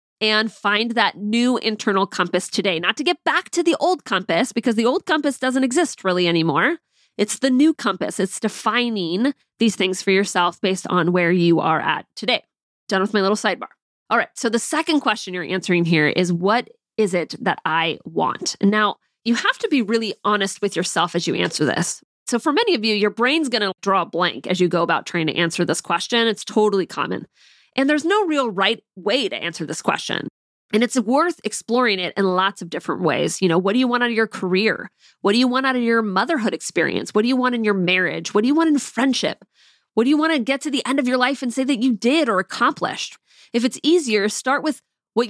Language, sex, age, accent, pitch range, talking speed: English, female, 20-39, American, 190-255 Hz, 230 wpm